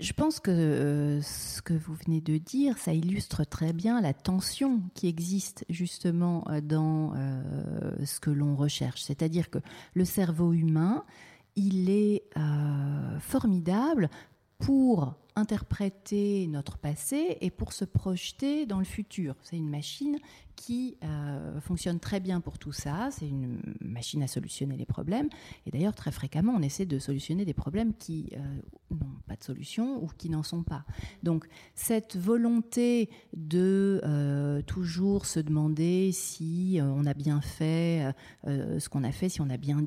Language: French